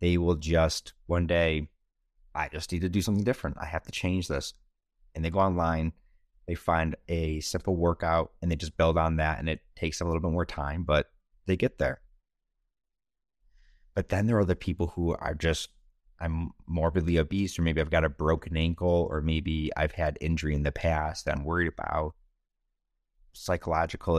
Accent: American